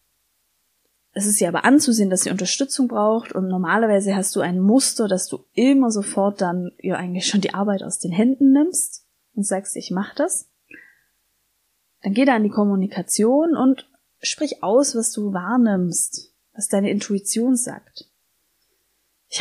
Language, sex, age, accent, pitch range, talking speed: German, female, 20-39, German, 195-260 Hz, 160 wpm